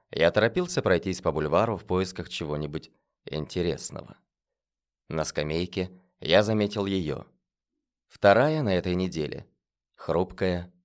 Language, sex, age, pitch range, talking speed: Russian, male, 20-39, 85-110 Hz, 105 wpm